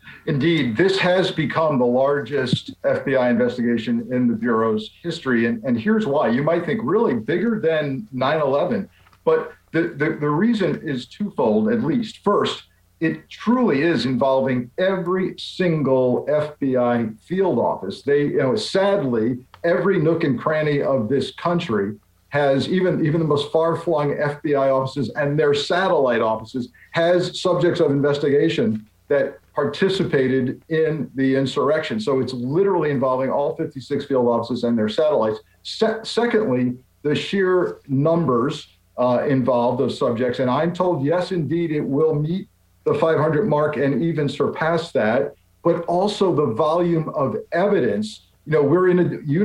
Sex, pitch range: male, 125-175 Hz